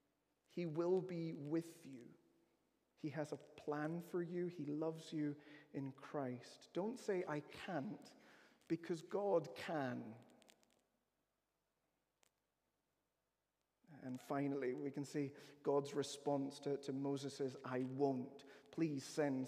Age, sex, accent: 30-49, male, British